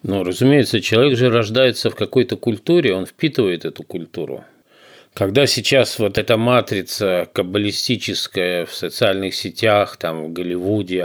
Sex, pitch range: male, 95-125 Hz